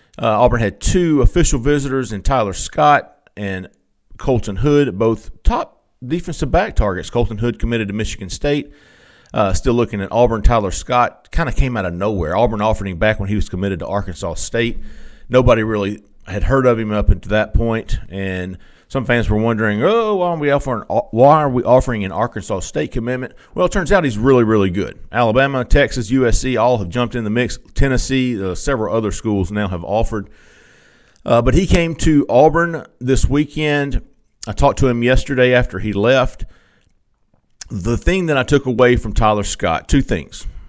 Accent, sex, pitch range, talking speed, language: American, male, 100-130 Hz, 185 wpm, English